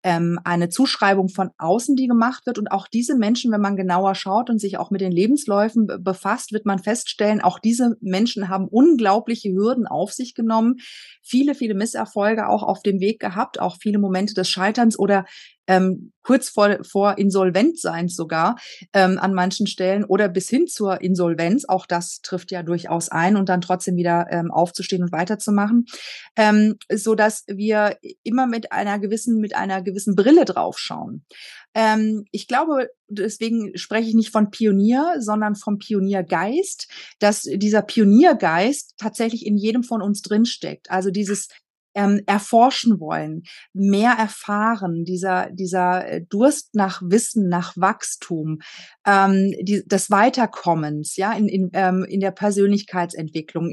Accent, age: German, 30-49